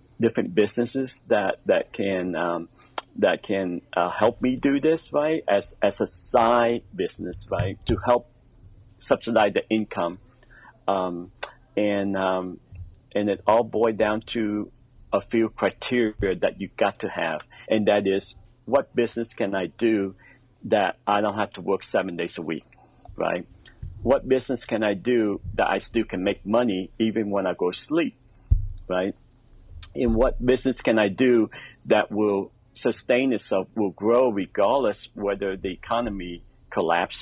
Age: 50-69